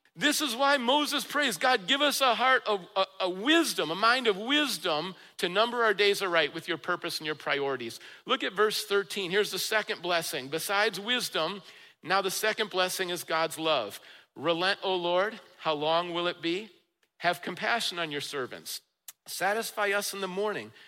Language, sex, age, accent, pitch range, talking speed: English, male, 50-69, American, 165-220 Hz, 185 wpm